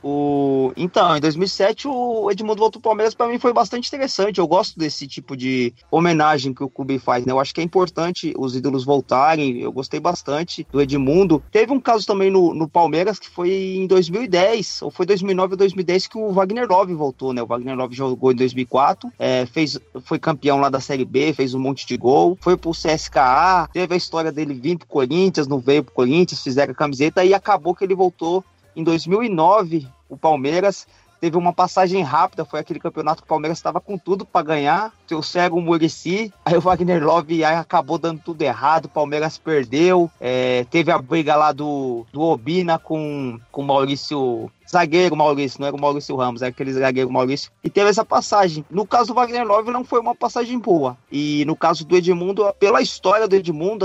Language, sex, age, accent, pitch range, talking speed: Portuguese, male, 30-49, Brazilian, 145-195 Hz, 205 wpm